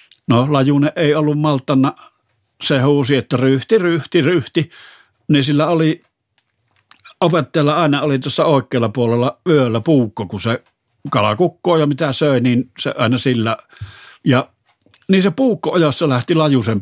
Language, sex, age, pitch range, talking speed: Finnish, male, 60-79, 100-140 Hz, 145 wpm